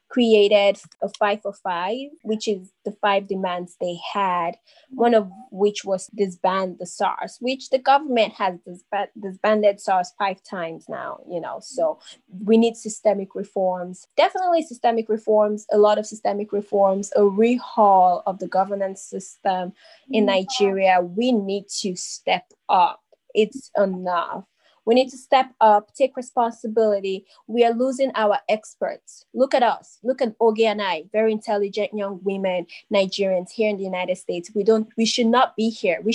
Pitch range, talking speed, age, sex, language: 195-235 Hz, 160 wpm, 20-39, female, English